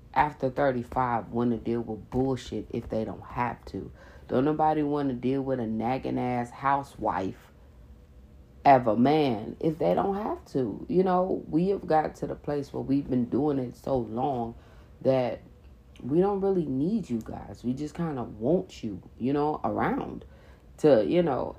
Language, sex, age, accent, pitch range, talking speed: English, female, 40-59, American, 115-150 Hz, 180 wpm